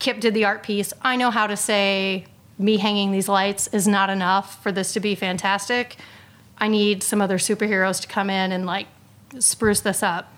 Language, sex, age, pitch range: English, female, 30-49, 195-220 Hz